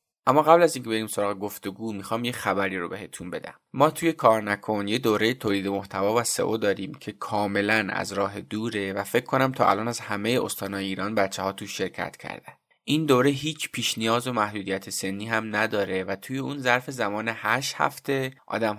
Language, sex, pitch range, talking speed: Persian, male, 100-125 Hz, 195 wpm